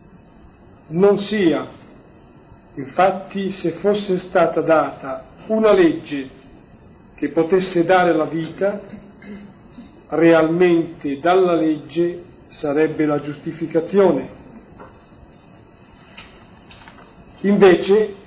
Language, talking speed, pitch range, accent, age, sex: Italian, 70 wpm, 155-195 Hz, native, 50-69, male